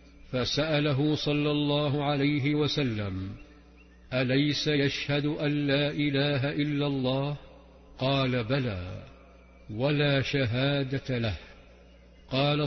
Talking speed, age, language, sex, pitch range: 85 wpm, 50-69, Arabic, male, 130-145 Hz